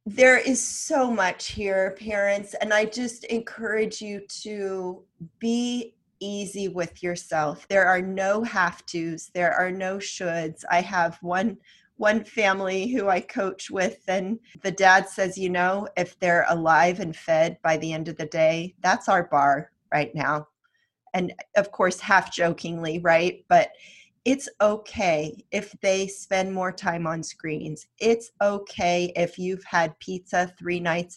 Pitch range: 170-205 Hz